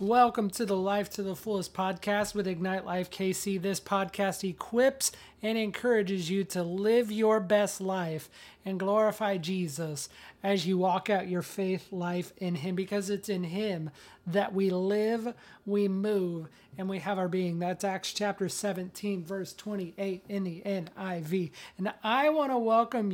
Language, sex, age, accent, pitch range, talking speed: English, male, 30-49, American, 180-210 Hz, 165 wpm